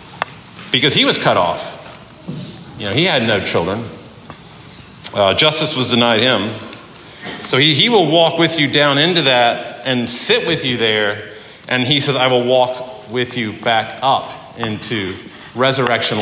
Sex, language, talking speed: male, English, 160 wpm